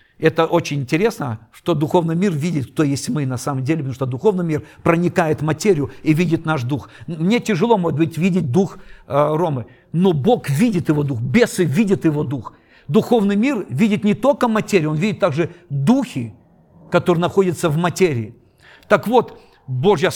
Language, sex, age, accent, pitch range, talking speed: Russian, male, 50-69, native, 130-175 Hz, 175 wpm